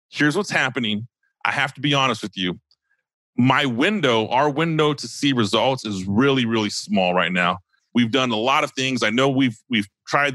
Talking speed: 195 wpm